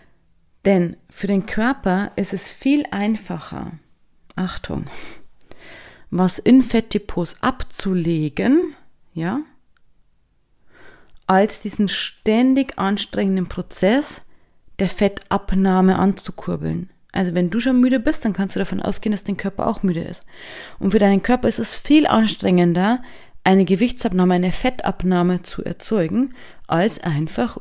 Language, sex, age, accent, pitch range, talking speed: German, female, 30-49, German, 180-225 Hz, 120 wpm